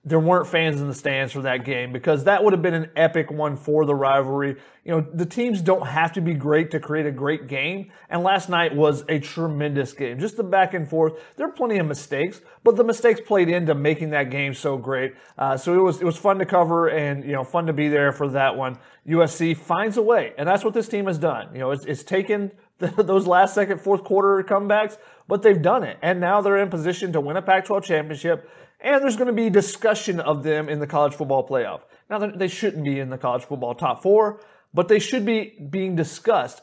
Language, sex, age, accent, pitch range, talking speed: English, male, 30-49, American, 150-195 Hz, 240 wpm